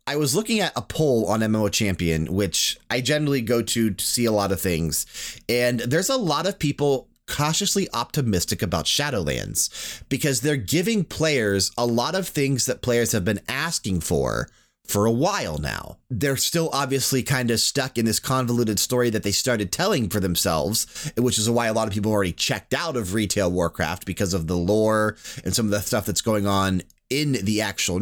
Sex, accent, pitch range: male, American, 105-130 Hz